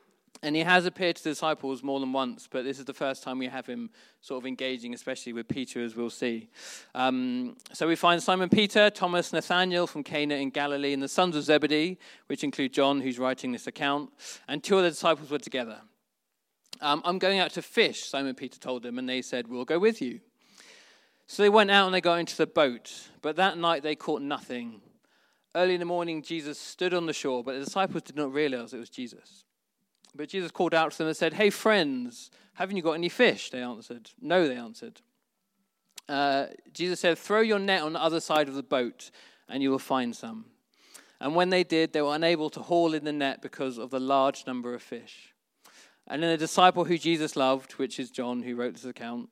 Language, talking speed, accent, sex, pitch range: English, 220 wpm, British, male, 135-185 Hz